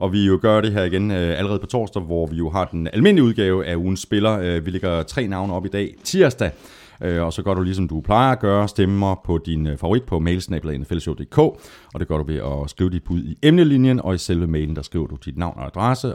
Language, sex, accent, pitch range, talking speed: Danish, male, native, 85-120 Hz, 240 wpm